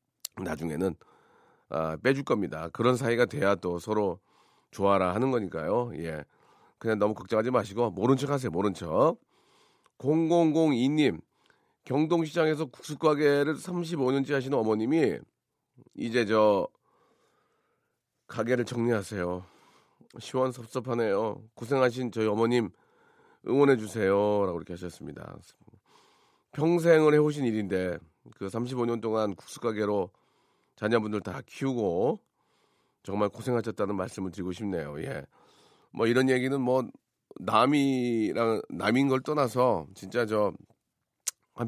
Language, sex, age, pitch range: Korean, male, 40-59, 100-135 Hz